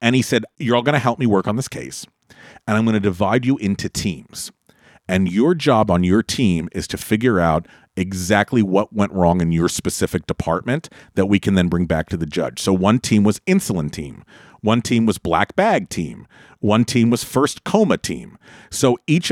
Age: 40-59